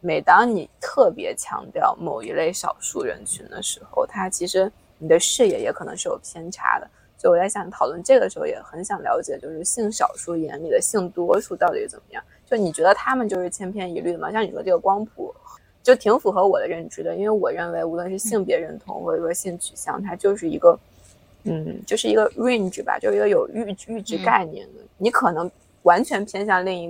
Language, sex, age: Chinese, female, 20-39